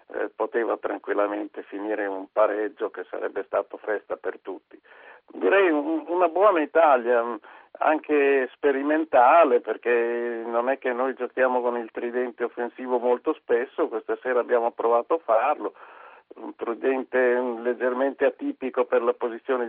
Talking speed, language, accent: 135 wpm, Italian, native